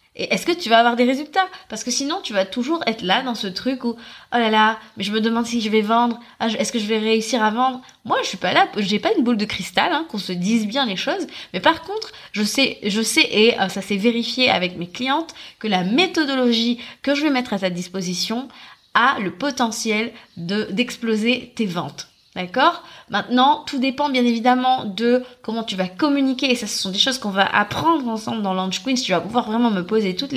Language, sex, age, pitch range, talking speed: French, female, 20-39, 205-270 Hz, 235 wpm